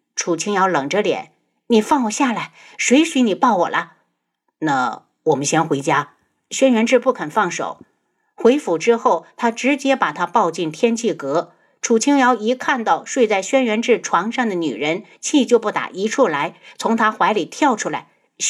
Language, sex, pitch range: Chinese, female, 190-265 Hz